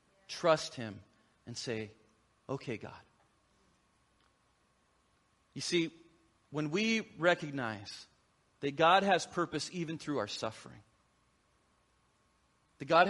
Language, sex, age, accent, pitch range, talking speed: English, male, 40-59, American, 120-160 Hz, 95 wpm